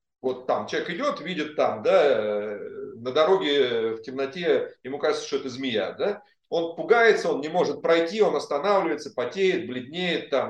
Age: 40-59